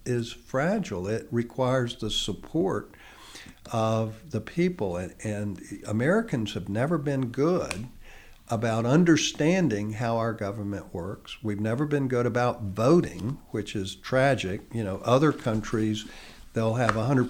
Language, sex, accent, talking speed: English, male, American, 135 wpm